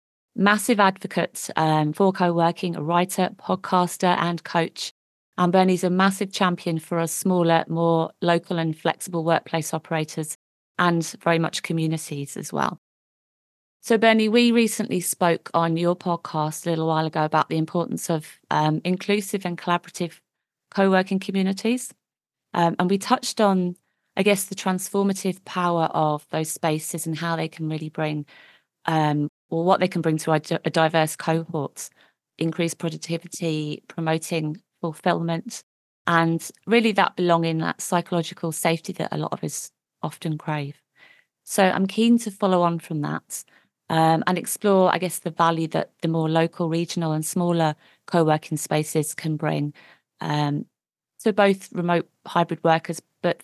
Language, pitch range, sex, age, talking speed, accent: English, 160-185 Hz, female, 30-49, 145 wpm, British